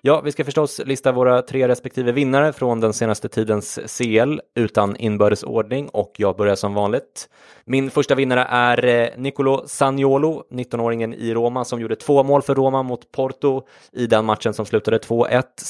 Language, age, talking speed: English, 20-39, 170 wpm